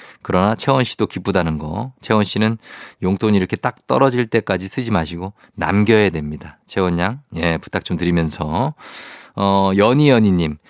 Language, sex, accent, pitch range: Korean, male, native, 95-135 Hz